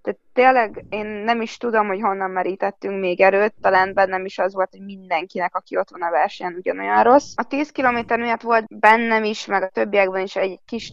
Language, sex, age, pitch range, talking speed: Hungarian, female, 20-39, 190-220 Hz, 210 wpm